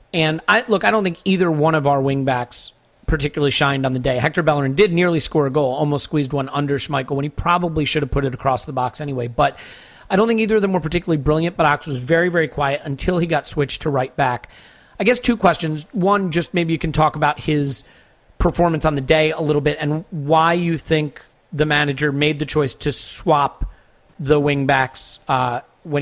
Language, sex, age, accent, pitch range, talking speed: English, male, 40-59, American, 140-165 Hz, 215 wpm